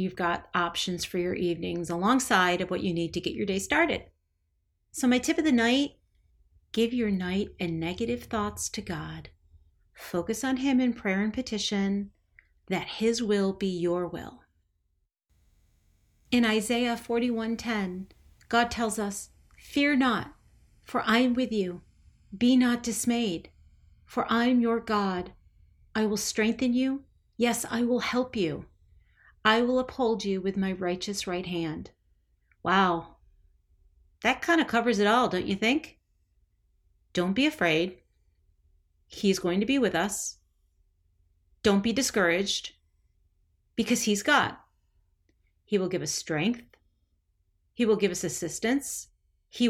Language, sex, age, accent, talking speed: English, female, 40-59, American, 145 wpm